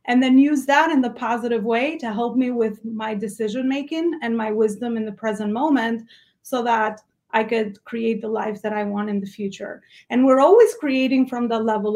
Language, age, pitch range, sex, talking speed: English, 30-49, 220-260 Hz, female, 210 wpm